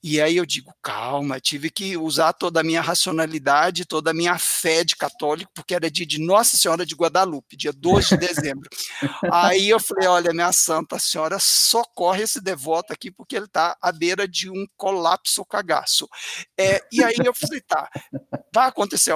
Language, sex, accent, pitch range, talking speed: Portuguese, male, Brazilian, 155-220 Hz, 180 wpm